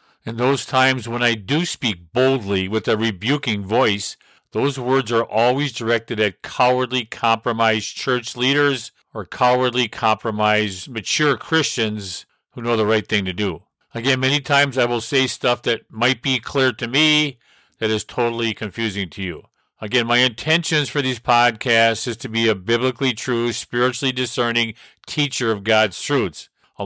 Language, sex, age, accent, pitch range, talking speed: English, male, 50-69, American, 115-140 Hz, 160 wpm